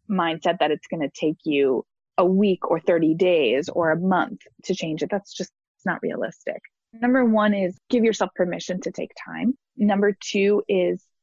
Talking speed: 180 wpm